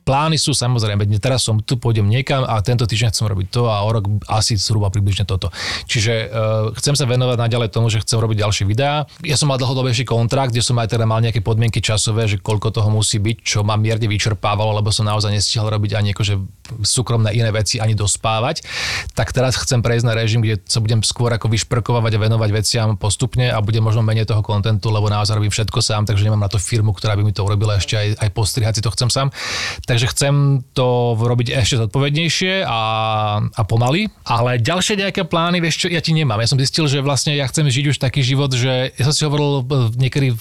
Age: 30-49